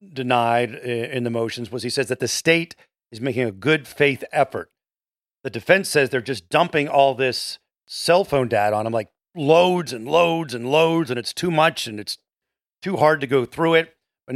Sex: male